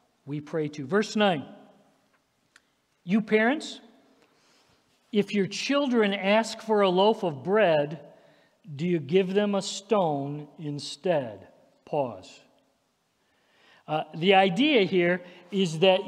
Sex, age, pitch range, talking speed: male, 50-69, 165-215 Hz, 110 wpm